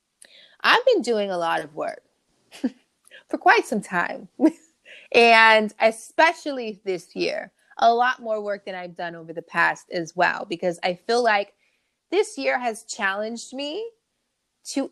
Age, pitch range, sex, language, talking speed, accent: 20-39, 180-235 Hz, female, English, 150 wpm, American